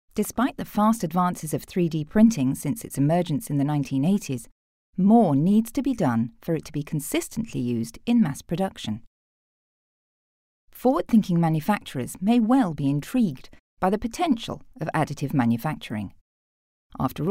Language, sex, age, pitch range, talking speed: English, female, 40-59, 140-210 Hz, 140 wpm